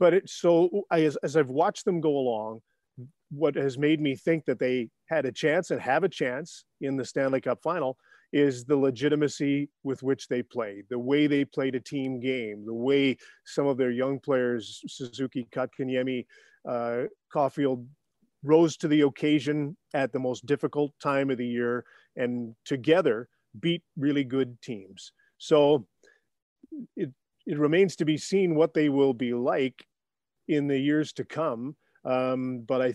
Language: English